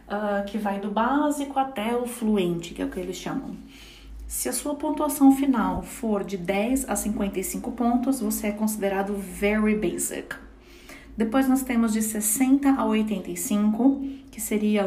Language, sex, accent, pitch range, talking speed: English, female, Brazilian, 205-240 Hz, 155 wpm